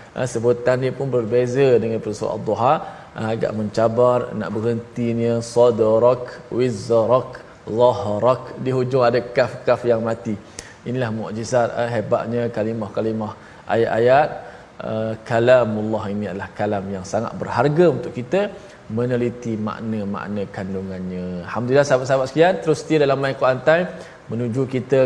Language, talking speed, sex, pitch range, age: Malayalam, 115 wpm, male, 115-145 Hz, 20-39